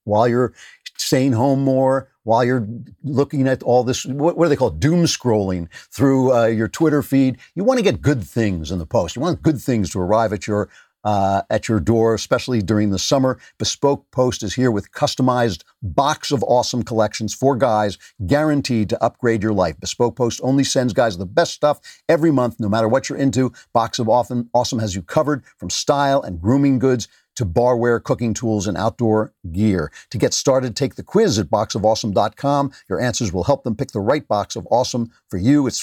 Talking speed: 200 wpm